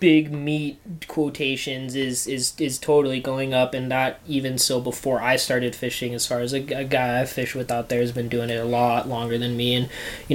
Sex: male